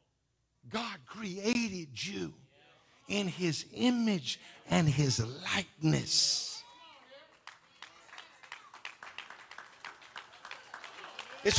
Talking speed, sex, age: 50 wpm, male, 50-69